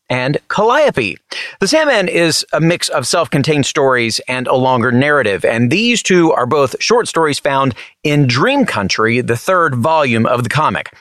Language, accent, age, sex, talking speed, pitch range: English, American, 30-49, male, 175 wpm, 135-180 Hz